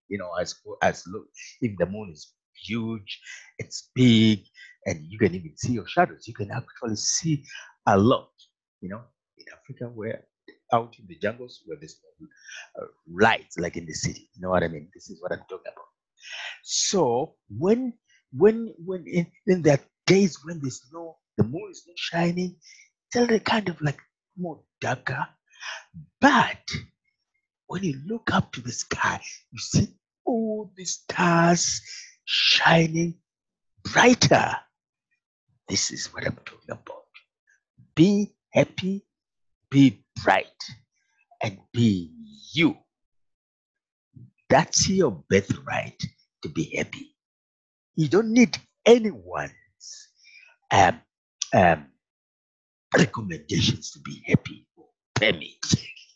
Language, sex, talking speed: English, male, 130 wpm